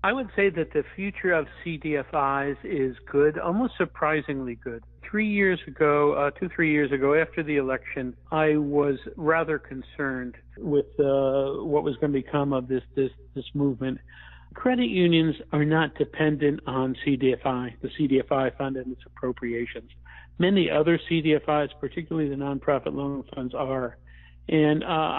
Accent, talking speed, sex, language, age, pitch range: American, 150 wpm, male, English, 60-79, 130-160 Hz